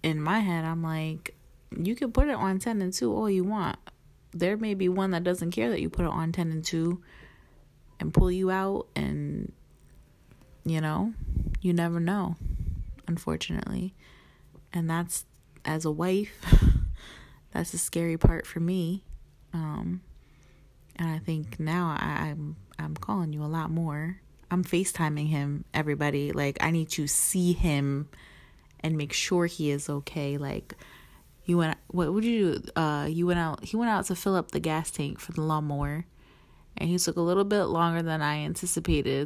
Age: 30-49